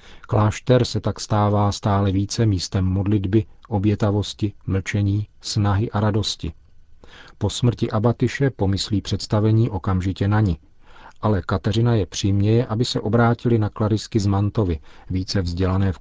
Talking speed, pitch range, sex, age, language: 130 wpm, 95-110 Hz, male, 40-59, Czech